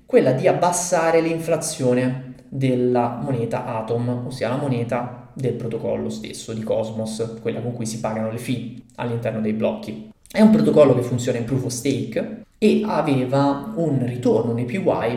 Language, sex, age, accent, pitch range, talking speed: Italian, male, 20-39, native, 120-145 Hz, 160 wpm